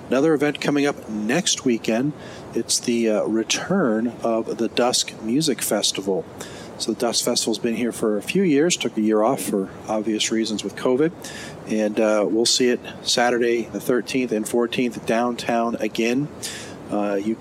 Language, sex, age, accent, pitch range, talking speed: English, male, 40-59, American, 105-120 Hz, 165 wpm